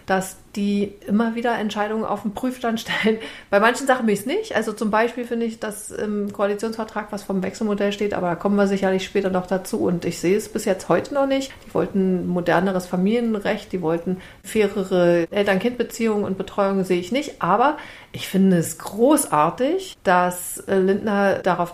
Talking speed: 180 wpm